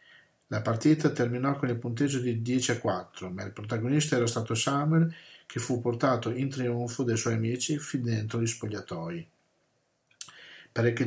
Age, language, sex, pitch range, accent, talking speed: 50-69, Italian, male, 110-135 Hz, native, 155 wpm